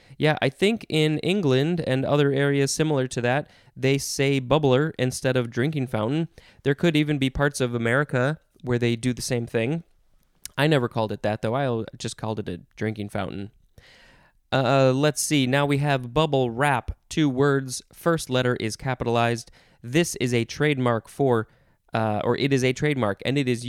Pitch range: 115-150 Hz